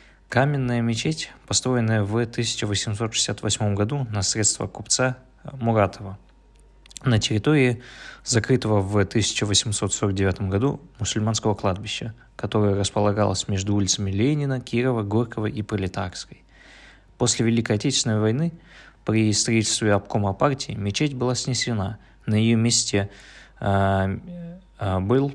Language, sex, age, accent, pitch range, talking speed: Russian, male, 20-39, native, 105-125 Hz, 100 wpm